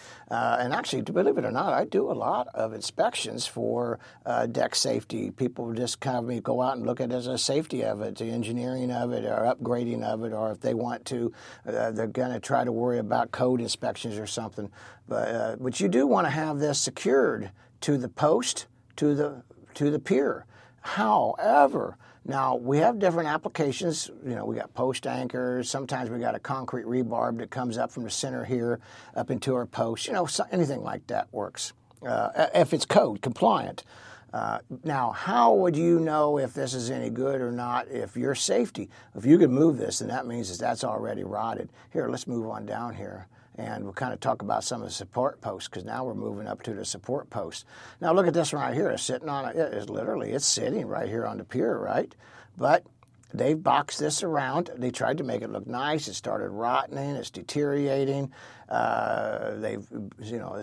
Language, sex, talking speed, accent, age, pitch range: English, male, 210 wpm, American, 60-79, 115-140 Hz